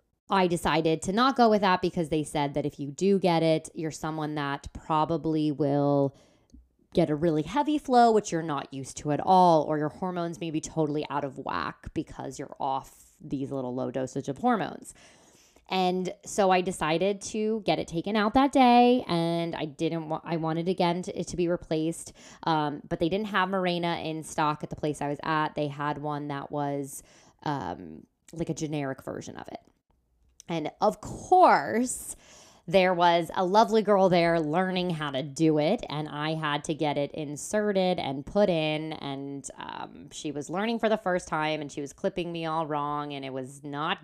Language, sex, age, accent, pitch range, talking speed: English, female, 20-39, American, 145-185 Hz, 195 wpm